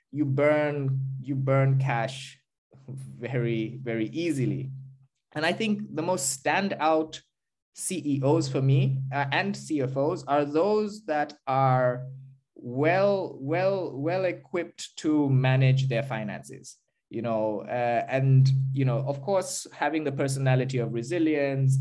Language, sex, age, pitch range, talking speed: English, male, 20-39, 120-145 Hz, 125 wpm